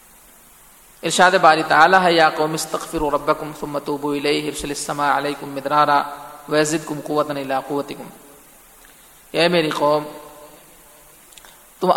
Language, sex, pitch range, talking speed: Urdu, male, 145-175 Hz, 95 wpm